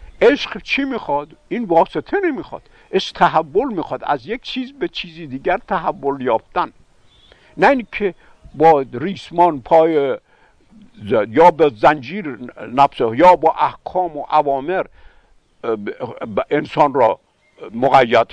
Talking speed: 110 wpm